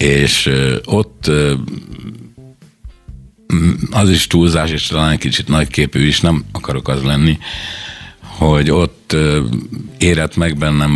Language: Hungarian